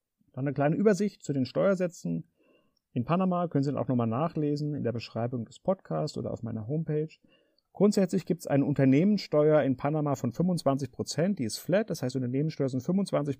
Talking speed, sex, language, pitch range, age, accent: 185 wpm, male, German, 130-175 Hz, 40-59, German